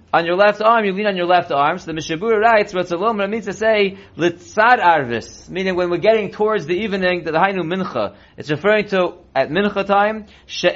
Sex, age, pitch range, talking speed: male, 30-49, 170-205 Hz, 210 wpm